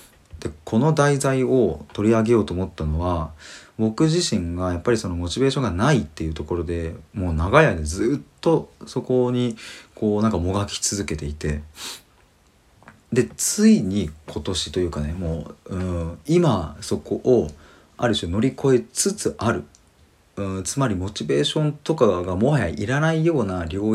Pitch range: 80-120 Hz